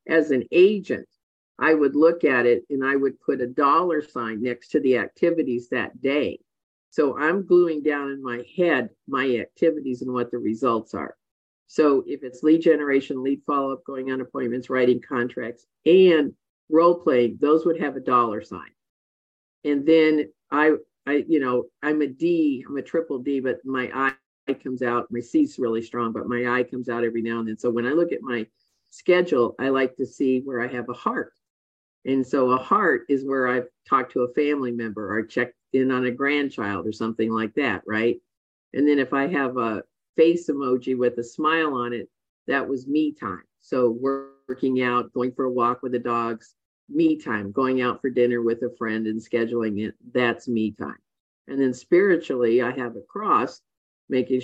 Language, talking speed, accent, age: English, 195 wpm, American, 50-69